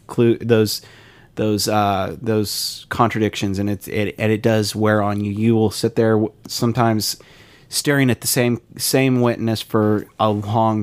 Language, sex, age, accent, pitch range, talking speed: English, male, 30-49, American, 105-120 Hz, 155 wpm